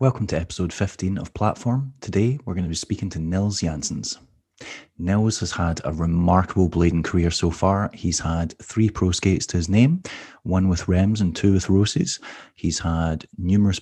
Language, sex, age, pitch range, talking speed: English, male, 30-49, 90-110 Hz, 180 wpm